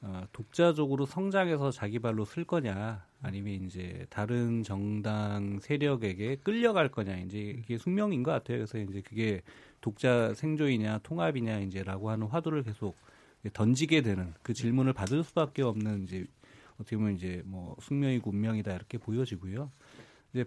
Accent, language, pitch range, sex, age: native, Korean, 105-140 Hz, male, 30-49